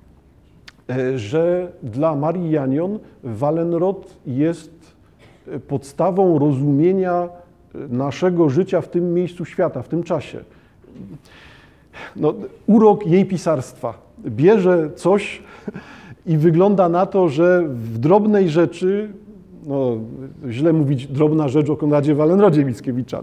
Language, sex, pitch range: Polish, male, 145-175 Hz